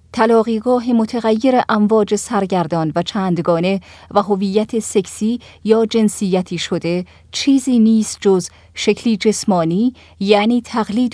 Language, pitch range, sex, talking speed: Persian, 185-235 Hz, female, 100 wpm